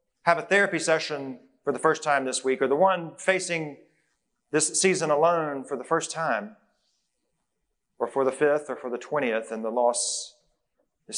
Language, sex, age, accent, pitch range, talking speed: English, male, 40-59, American, 135-175 Hz, 175 wpm